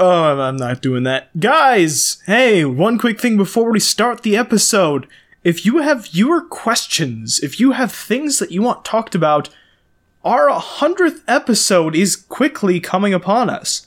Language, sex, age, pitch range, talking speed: English, male, 20-39, 145-215 Hz, 160 wpm